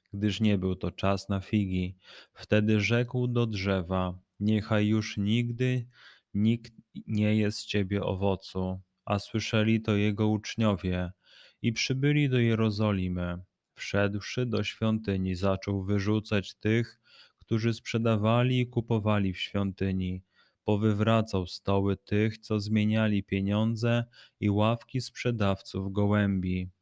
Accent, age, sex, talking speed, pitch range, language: native, 20-39, male, 115 wpm, 100-115 Hz, Polish